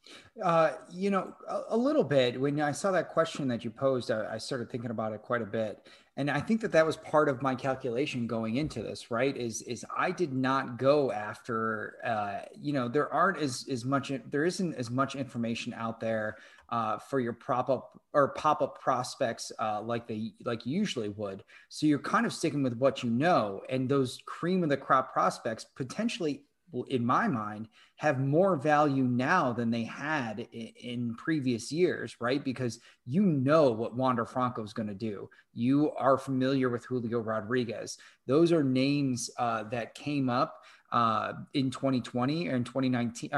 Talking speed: 190 wpm